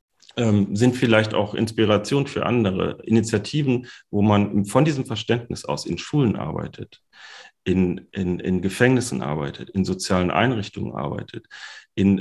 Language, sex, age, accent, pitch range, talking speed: German, male, 40-59, German, 95-115 Hz, 130 wpm